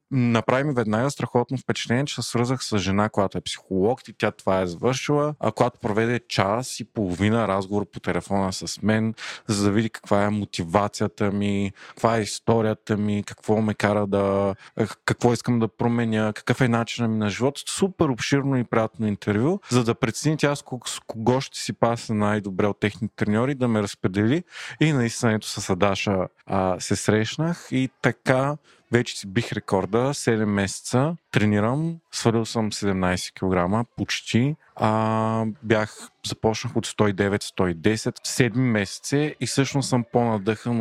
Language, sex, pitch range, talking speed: Bulgarian, male, 105-130 Hz, 160 wpm